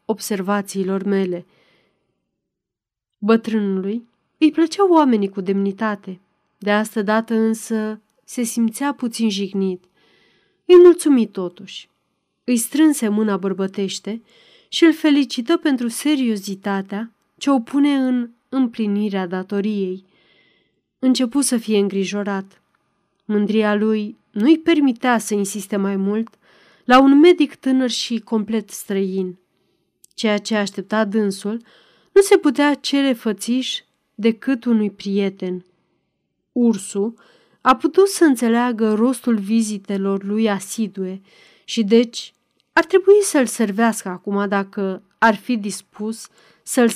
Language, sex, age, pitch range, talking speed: Romanian, female, 30-49, 200-245 Hz, 110 wpm